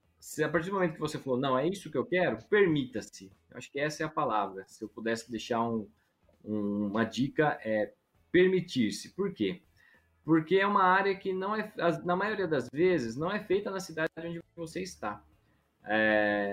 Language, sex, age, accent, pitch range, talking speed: Portuguese, male, 20-39, Brazilian, 115-175 Hz, 190 wpm